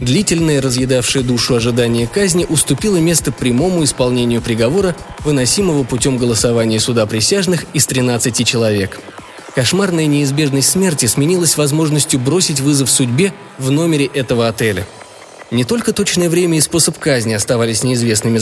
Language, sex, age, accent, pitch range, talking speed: Russian, male, 20-39, native, 115-150 Hz, 125 wpm